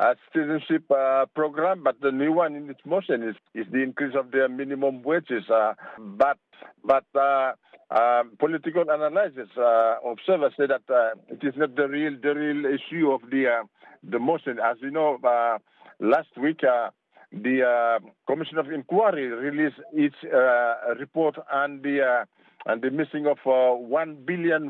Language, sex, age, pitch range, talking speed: English, male, 50-69, 125-145 Hz, 170 wpm